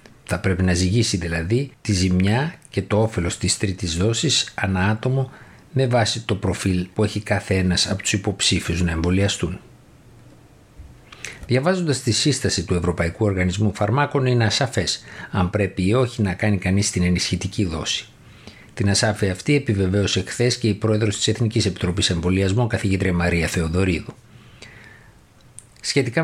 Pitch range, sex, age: 95-115 Hz, male, 50-69